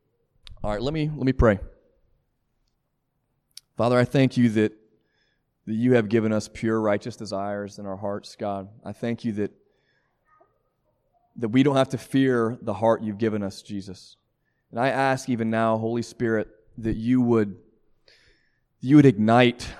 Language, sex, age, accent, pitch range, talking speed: English, male, 30-49, American, 110-140 Hz, 160 wpm